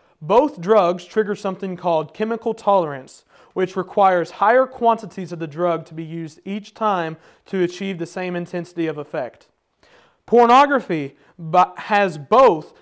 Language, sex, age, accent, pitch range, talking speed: English, male, 30-49, American, 170-205 Hz, 135 wpm